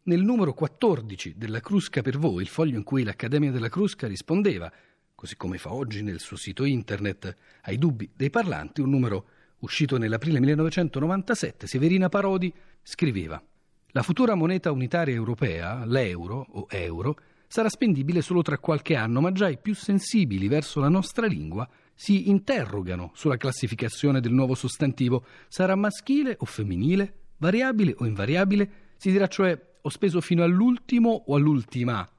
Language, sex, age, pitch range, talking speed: Italian, male, 40-59, 115-185 Hz, 150 wpm